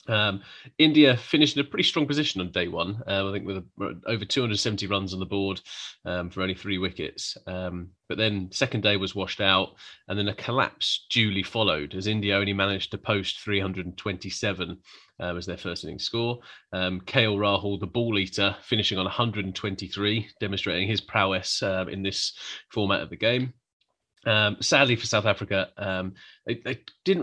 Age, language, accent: 30-49, English, British